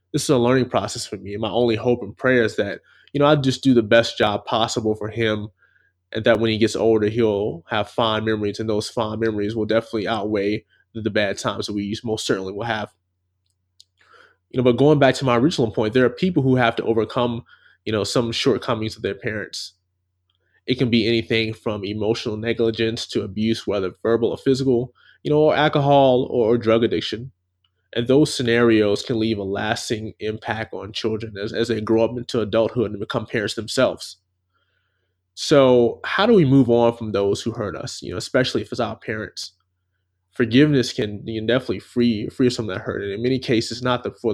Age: 20-39